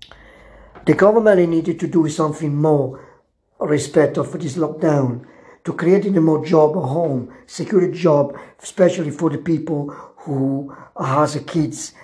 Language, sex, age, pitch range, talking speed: Italian, male, 60-79, 145-165 Hz, 145 wpm